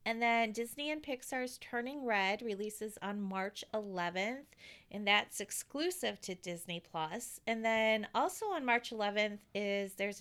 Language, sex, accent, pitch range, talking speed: English, female, American, 195-255 Hz, 145 wpm